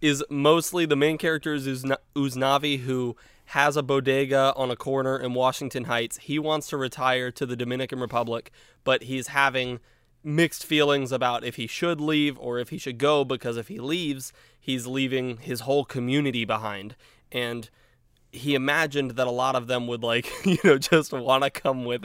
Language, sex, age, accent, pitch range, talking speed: English, male, 20-39, American, 120-140 Hz, 180 wpm